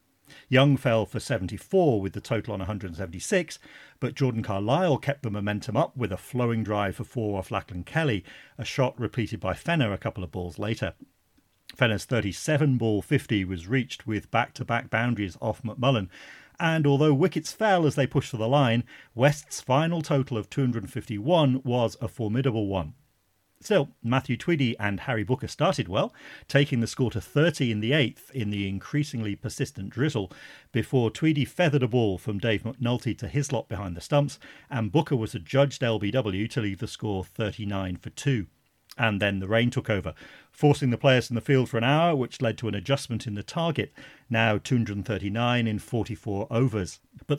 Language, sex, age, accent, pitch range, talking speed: English, male, 40-59, British, 105-140 Hz, 175 wpm